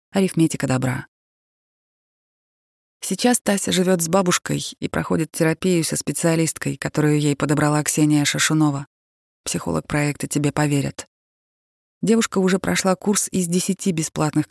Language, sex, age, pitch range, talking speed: Russian, female, 20-39, 110-165 Hz, 115 wpm